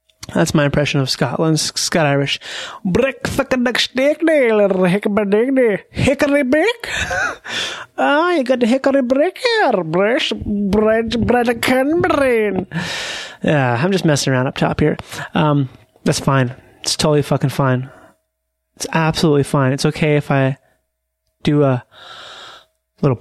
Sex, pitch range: male, 135-190 Hz